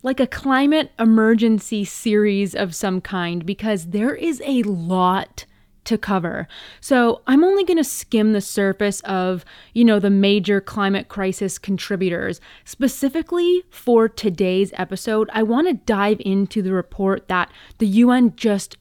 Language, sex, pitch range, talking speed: English, female, 190-240 Hz, 145 wpm